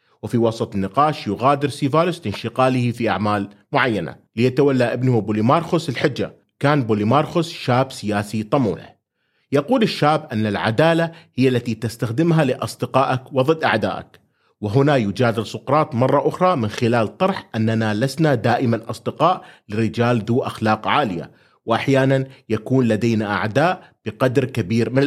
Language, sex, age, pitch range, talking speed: Arabic, male, 30-49, 115-150 Hz, 120 wpm